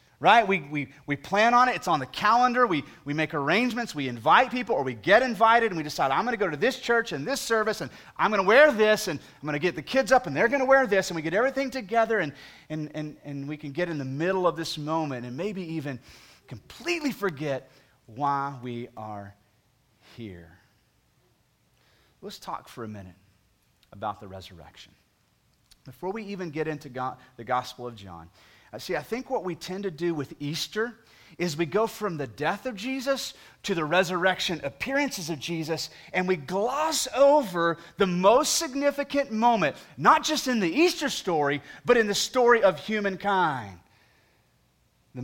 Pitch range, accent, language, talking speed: 125-205 Hz, American, English, 190 wpm